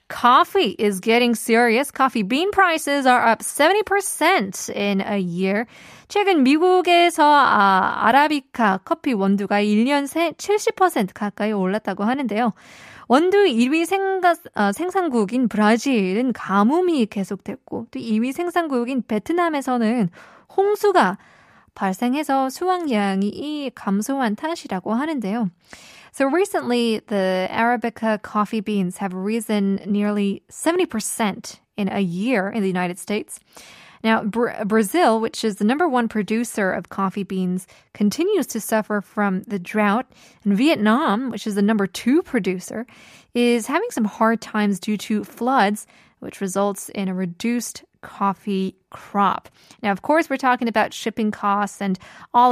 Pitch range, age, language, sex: 205-270 Hz, 20-39, Korean, female